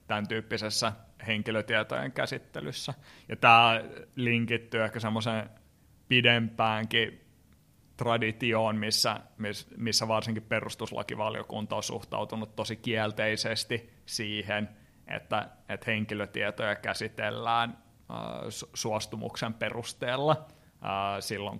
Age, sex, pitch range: 30-49, male, 110-120 Hz